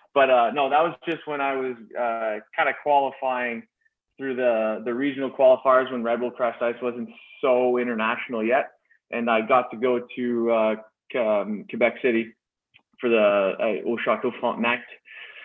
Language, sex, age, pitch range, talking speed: English, male, 20-39, 115-140 Hz, 165 wpm